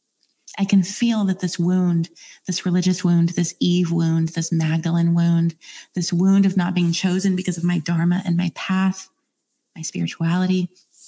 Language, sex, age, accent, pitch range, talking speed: English, female, 20-39, American, 175-205 Hz, 165 wpm